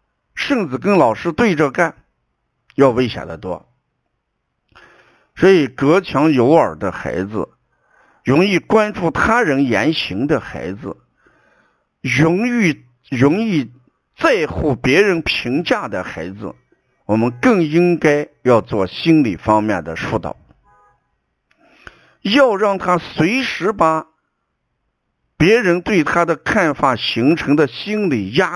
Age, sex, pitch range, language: 60-79, male, 120-180 Hz, Chinese